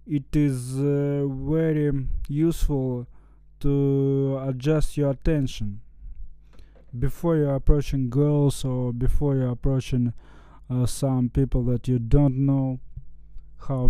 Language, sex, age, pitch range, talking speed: Russian, male, 20-39, 125-145 Hz, 115 wpm